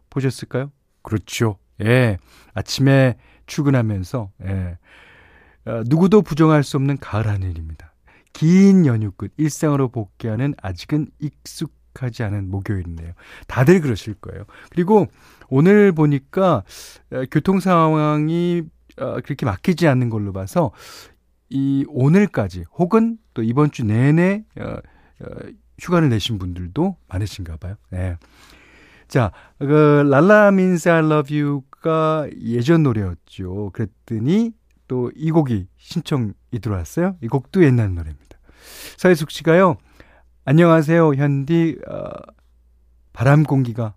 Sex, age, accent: male, 40-59, native